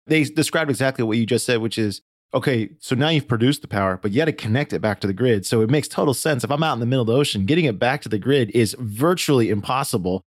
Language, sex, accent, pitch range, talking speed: English, male, American, 105-135 Hz, 285 wpm